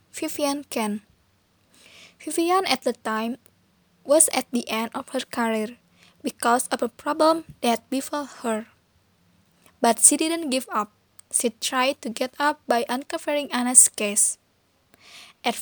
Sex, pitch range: female, 230-280 Hz